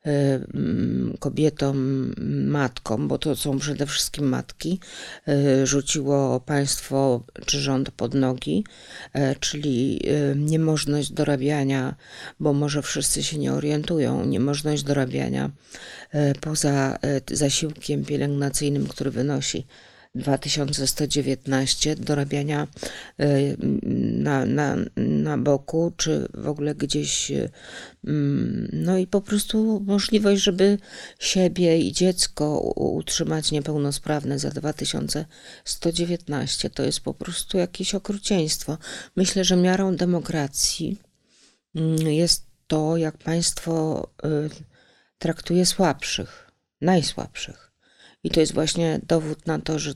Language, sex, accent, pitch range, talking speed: Polish, female, native, 140-165 Hz, 90 wpm